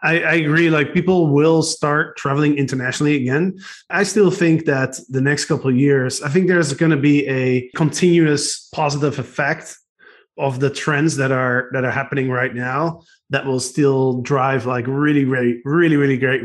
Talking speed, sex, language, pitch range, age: 180 wpm, male, English, 130-155 Hz, 20-39